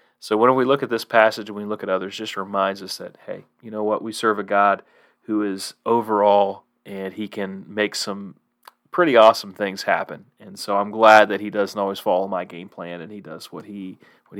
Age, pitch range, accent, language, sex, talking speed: 30-49, 105-115 Hz, American, English, male, 220 wpm